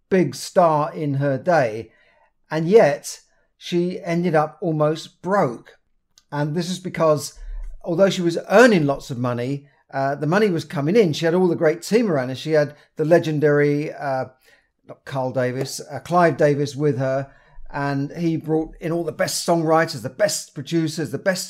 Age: 50-69